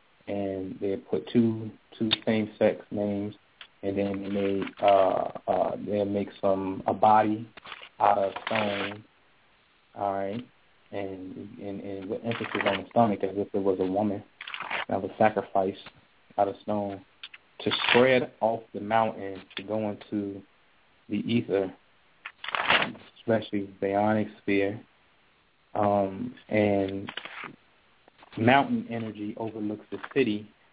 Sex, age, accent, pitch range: male, 20-39, American, 100-110 Hz